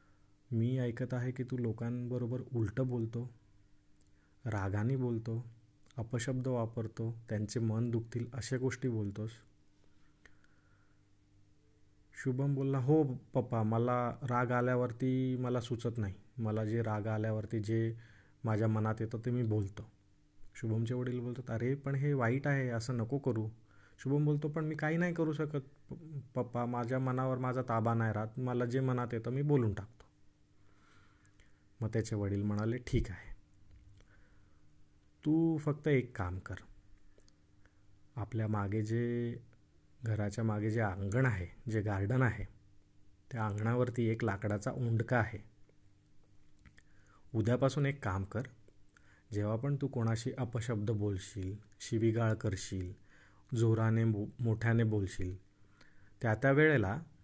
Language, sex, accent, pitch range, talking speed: Marathi, male, native, 100-125 Hz, 115 wpm